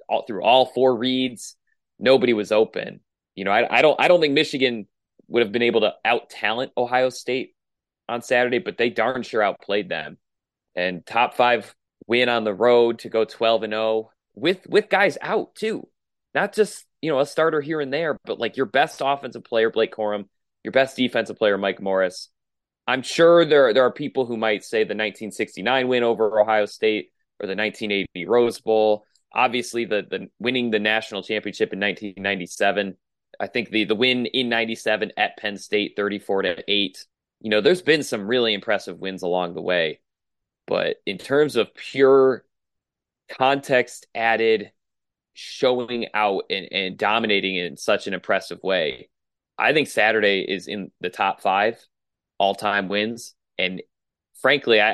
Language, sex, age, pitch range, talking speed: English, male, 30-49, 105-125 Hz, 175 wpm